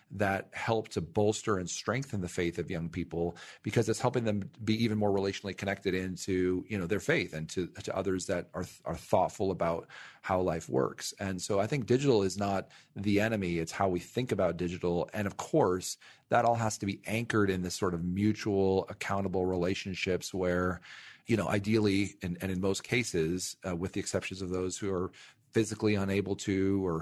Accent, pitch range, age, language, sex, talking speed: American, 90-105 Hz, 40-59, English, male, 200 wpm